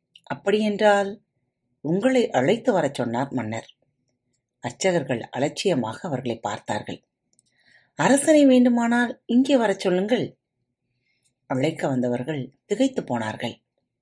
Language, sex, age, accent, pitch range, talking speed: Tamil, female, 30-49, native, 125-210 Hz, 80 wpm